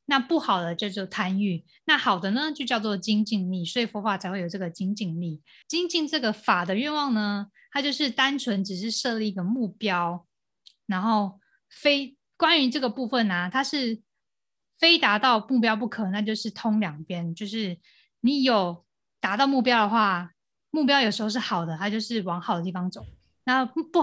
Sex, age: female, 20-39